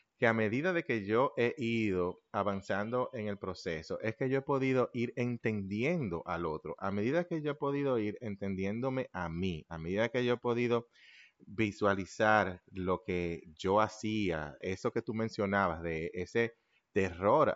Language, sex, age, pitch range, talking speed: Spanish, male, 30-49, 90-115 Hz, 170 wpm